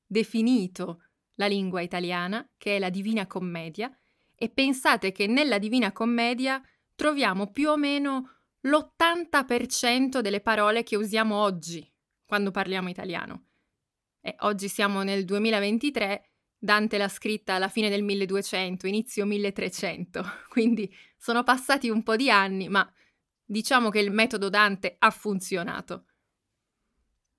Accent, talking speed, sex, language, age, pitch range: native, 125 wpm, female, Italian, 20-39, 190-230 Hz